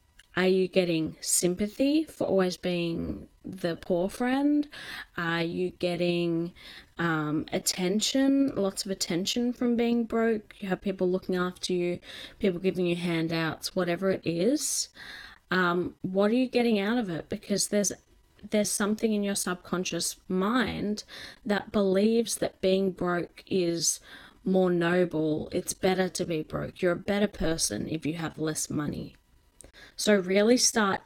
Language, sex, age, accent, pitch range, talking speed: English, female, 20-39, Australian, 175-205 Hz, 145 wpm